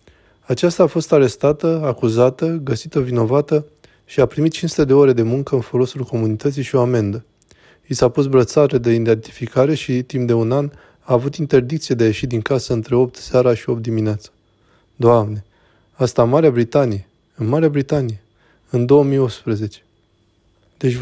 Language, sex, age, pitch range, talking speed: Romanian, male, 20-39, 115-140 Hz, 165 wpm